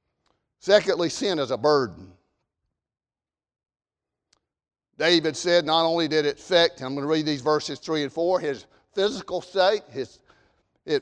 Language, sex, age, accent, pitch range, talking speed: English, male, 50-69, American, 165-235 Hz, 140 wpm